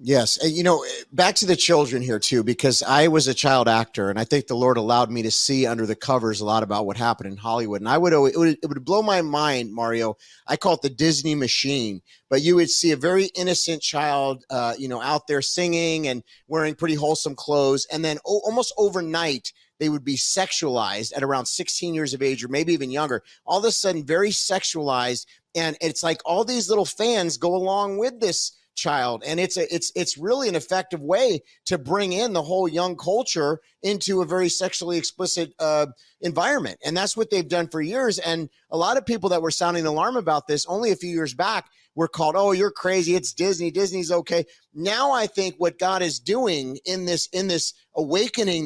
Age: 30-49